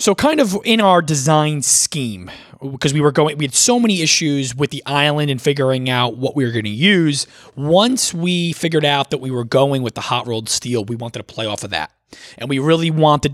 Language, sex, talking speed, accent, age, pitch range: English, male, 235 wpm, American, 20-39, 130-170 Hz